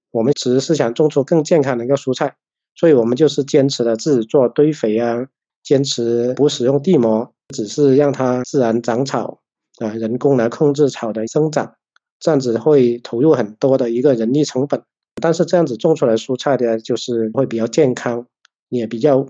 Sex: male